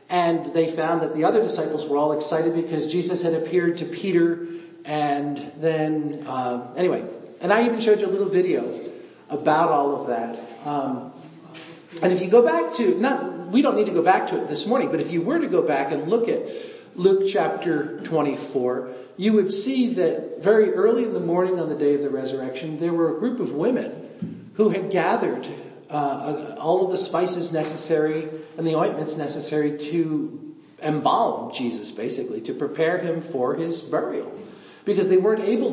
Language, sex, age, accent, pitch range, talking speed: English, male, 40-59, American, 145-185 Hz, 185 wpm